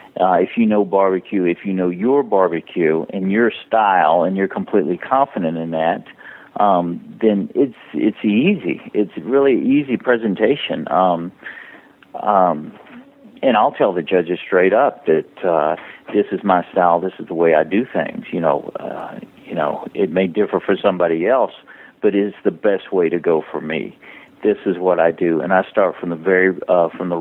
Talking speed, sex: 185 wpm, male